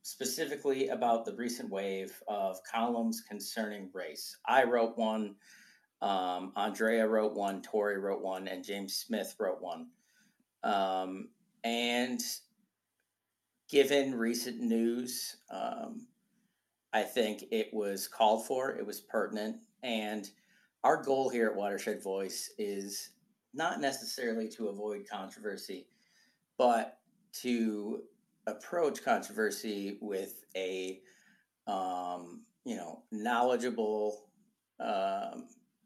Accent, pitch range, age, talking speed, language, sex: American, 100-120 Hz, 40-59, 105 wpm, English, male